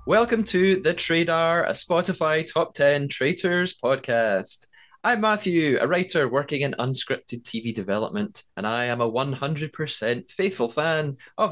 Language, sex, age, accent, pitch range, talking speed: English, male, 20-39, British, 120-180 Hz, 140 wpm